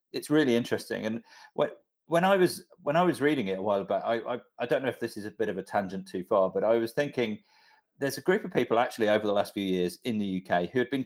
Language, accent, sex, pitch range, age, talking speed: English, British, male, 95-130 Hz, 40-59, 280 wpm